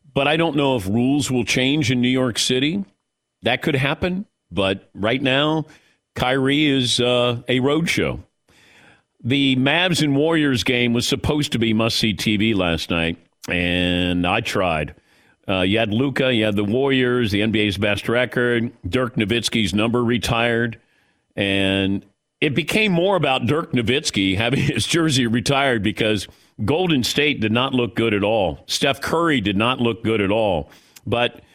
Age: 50-69